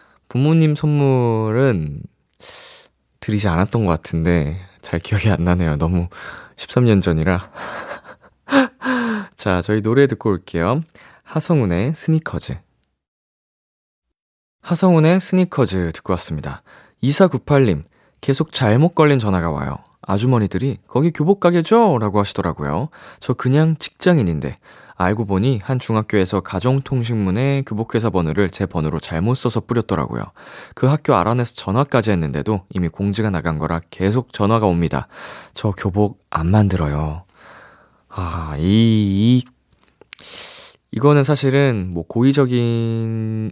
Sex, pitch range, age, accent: male, 90-130 Hz, 20-39, native